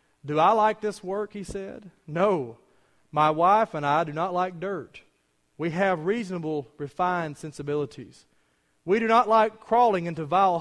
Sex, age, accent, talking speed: male, 30-49, American, 160 wpm